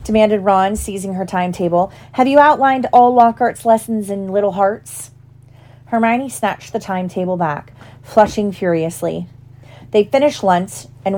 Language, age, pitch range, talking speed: English, 30-49, 170-235 Hz, 135 wpm